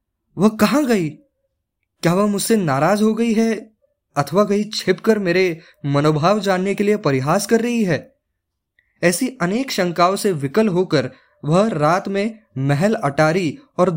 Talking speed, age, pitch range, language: 145 wpm, 20-39, 155-200 Hz, Hindi